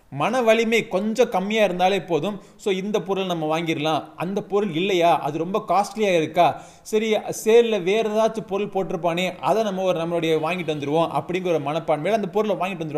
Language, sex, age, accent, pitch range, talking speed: Tamil, male, 20-39, native, 155-210 Hz, 75 wpm